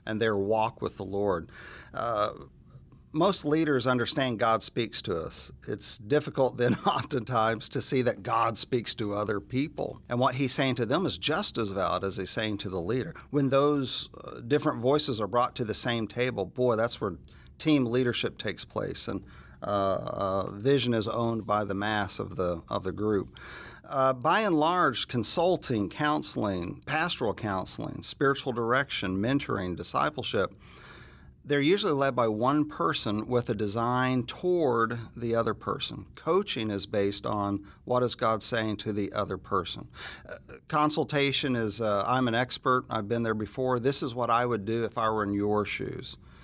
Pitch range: 105-130 Hz